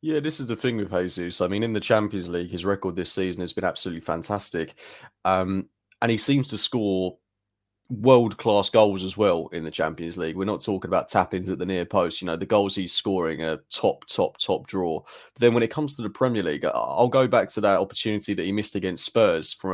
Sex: male